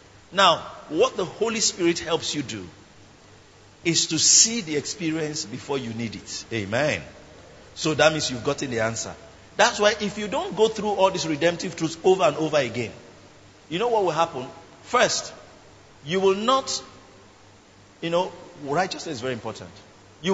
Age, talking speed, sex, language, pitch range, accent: 50-69, 165 wpm, male, English, 115-180 Hz, Nigerian